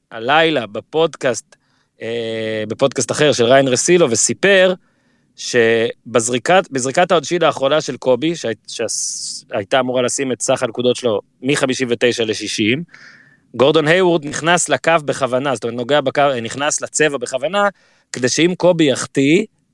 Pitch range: 130-180 Hz